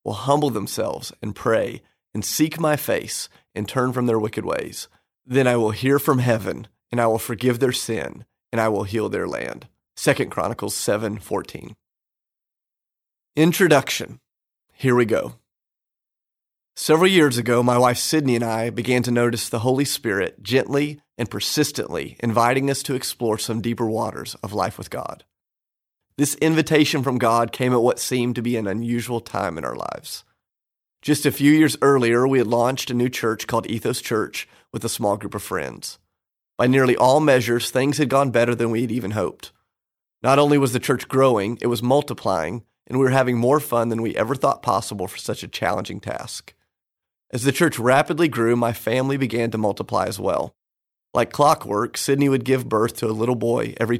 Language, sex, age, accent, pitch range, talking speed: English, male, 30-49, American, 115-135 Hz, 185 wpm